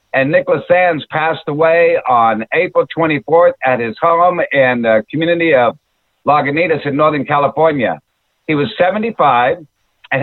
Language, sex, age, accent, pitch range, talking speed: English, male, 60-79, American, 140-170 Hz, 135 wpm